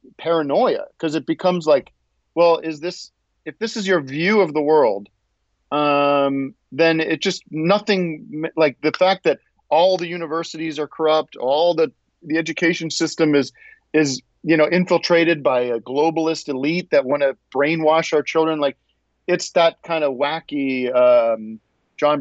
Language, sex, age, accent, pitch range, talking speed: English, male, 40-59, American, 130-170 Hz, 155 wpm